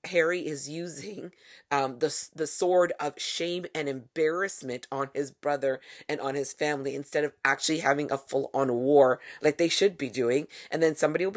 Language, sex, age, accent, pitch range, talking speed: English, female, 30-49, American, 140-175 Hz, 185 wpm